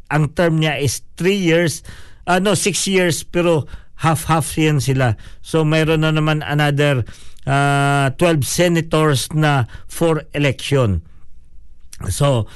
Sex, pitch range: male, 130-165 Hz